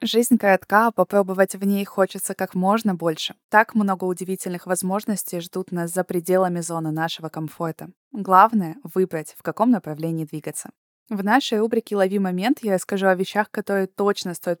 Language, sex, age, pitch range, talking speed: Russian, female, 20-39, 180-215 Hz, 165 wpm